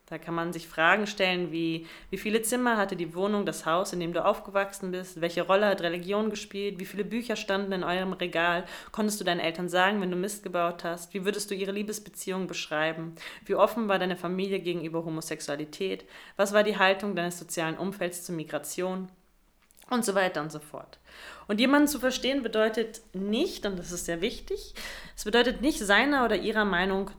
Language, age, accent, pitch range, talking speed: German, 30-49, German, 170-210 Hz, 195 wpm